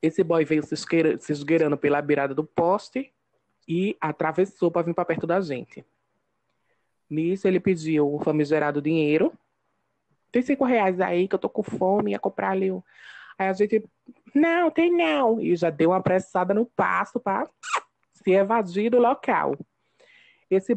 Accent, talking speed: Brazilian, 155 wpm